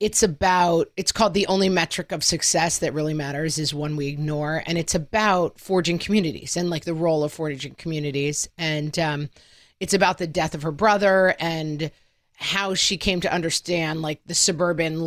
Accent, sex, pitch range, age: American, female, 155-190 Hz, 30-49